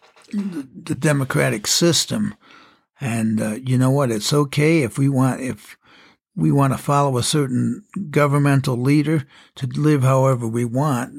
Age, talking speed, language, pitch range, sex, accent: 60-79, 145 wpm, English, 120-150 Hz, male, American